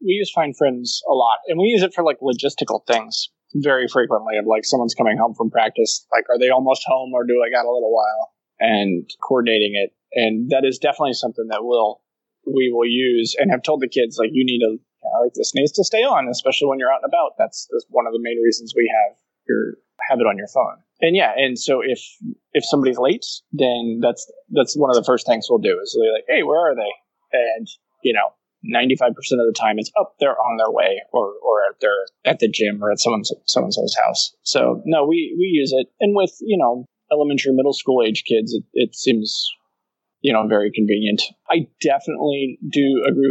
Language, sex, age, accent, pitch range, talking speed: English, male, 20-39, American, 120-190 Hz, 225 wpm